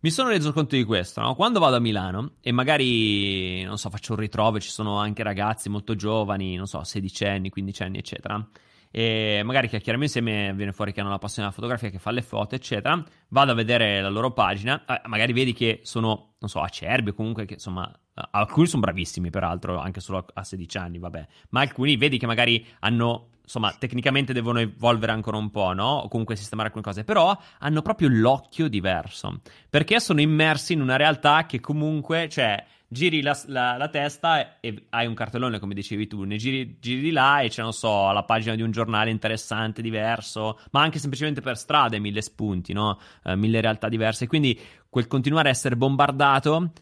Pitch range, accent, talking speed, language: 105-135 Hz, native, 200 wpm, Italian